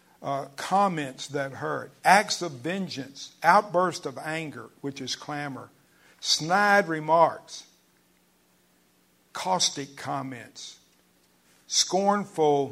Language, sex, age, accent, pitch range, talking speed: English, male, 50-69, American, 110-155 Hz, 85 wpm